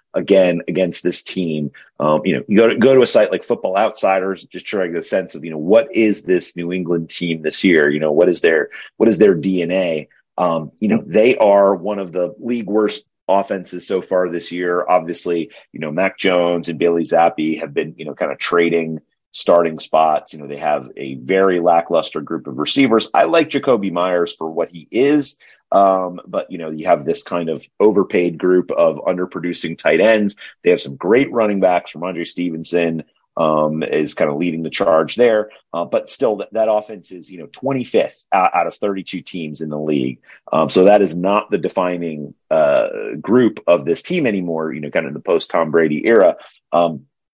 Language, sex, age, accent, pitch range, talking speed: English, male, 30-49, American, 80-100 Hz, 210 wpm